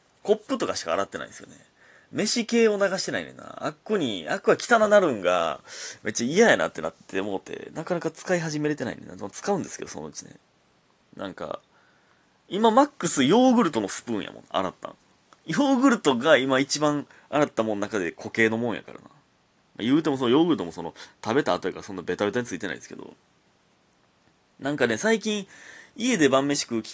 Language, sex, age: Japanese, male, 30-49